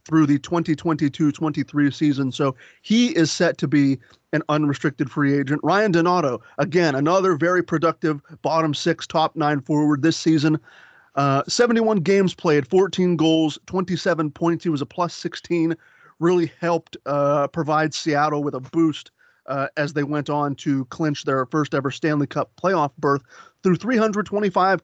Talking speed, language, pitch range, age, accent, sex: 150 wpm, English, 145-175 Hz, 30-49, American, male